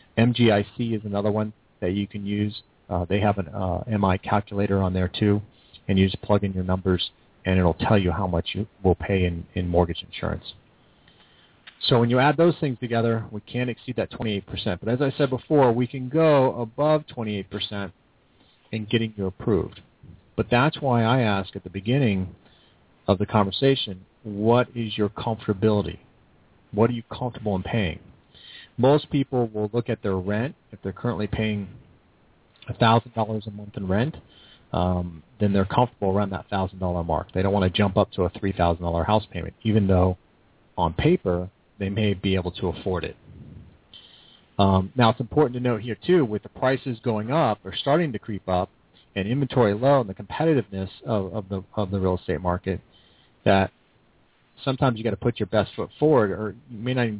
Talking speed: 190 wpm